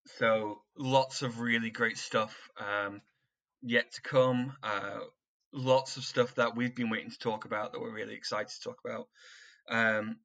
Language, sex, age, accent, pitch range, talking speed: English, male, 10-29, British, 110-130 Hz, 170 wpm